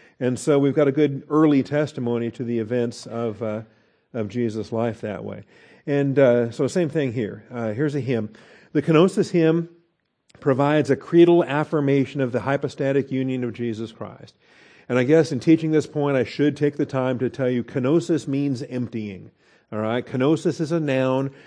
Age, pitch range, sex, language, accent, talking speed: 50-69, 120-155 Hz, male, English, American, 185 wpm